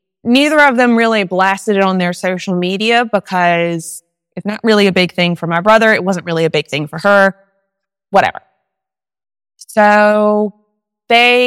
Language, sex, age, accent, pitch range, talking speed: English, female, 20-39, American, 180-220 Hz, 160 wpm